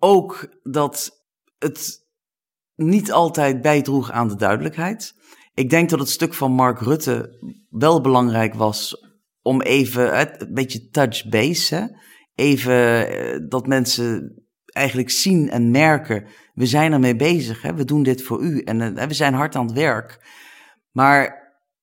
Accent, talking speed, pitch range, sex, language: Dutch, 135 wpm, 120-150 Hz, male, Dutch